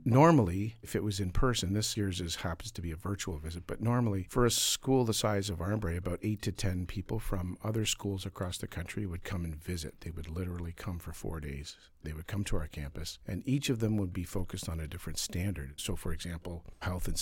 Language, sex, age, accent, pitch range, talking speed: English, male, 50-69, American, 85-105 Hz, 235 wpm